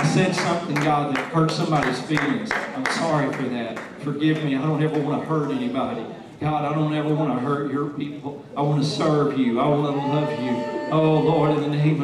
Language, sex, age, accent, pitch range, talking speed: English, male, 40-59, American, 140-170 Hz, 225 wpm